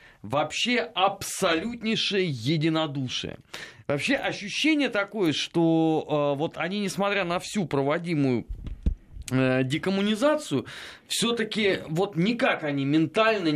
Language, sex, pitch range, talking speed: Russian, male, 125-180 Hz, 85 wpm